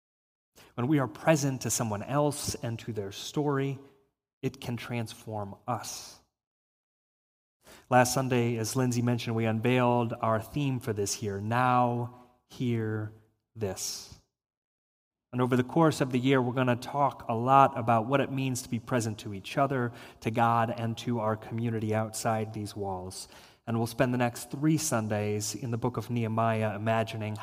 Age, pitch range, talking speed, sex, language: 30-49, 110-130 Hz, 165 wpm, male, English